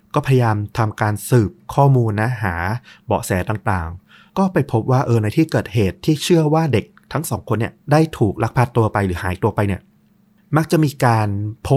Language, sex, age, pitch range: Thai, male, 30-49, 100-130 Hz